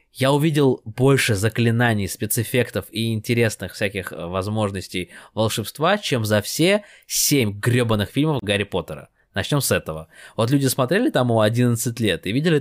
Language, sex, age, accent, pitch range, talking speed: Russian, male, 20-39, native, 100-130 Hz, 145 wpm